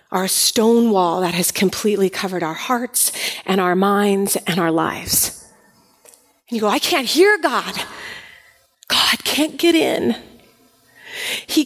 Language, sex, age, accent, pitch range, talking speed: English, female, 40-59, American, 200-270 Hz, 140 wpm